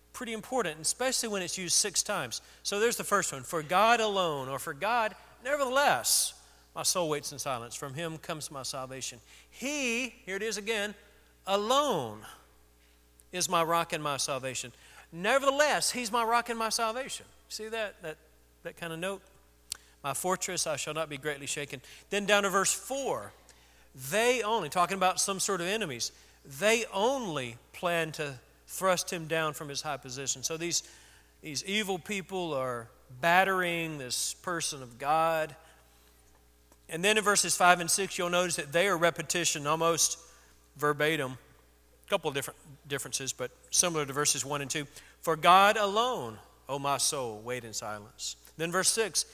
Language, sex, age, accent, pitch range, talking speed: English, male, 40-59, American, 135-195 Hz, 170 wpm